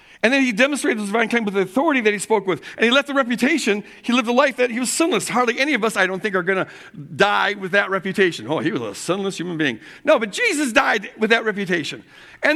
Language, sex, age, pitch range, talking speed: English, male, 50-69, 180-245 Hz, 270 wpm